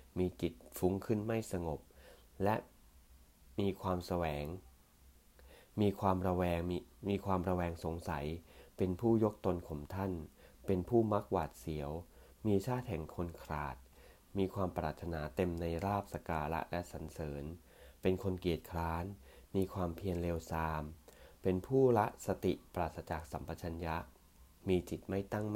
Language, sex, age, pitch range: English, male, 20-39, 75-95 Hz